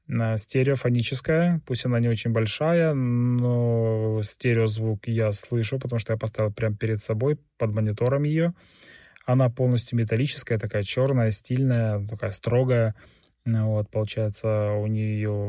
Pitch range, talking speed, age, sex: 110-130 Hz, 125 wpm, 20-39, male